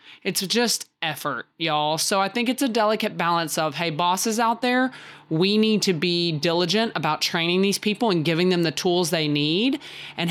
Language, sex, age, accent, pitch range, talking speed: English, male, 20-39, American, 160-200 Hz, 190 wpm